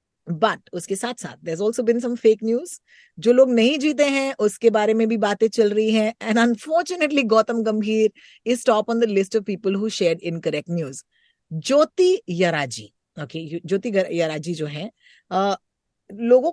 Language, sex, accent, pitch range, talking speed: Hindi, female, native, 180-255 Hz, 105 wpm